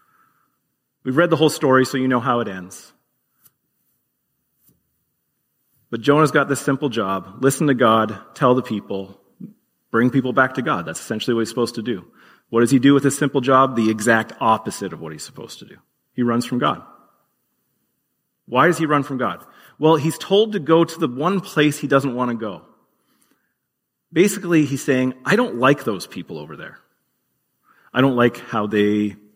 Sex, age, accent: male, 40-59, American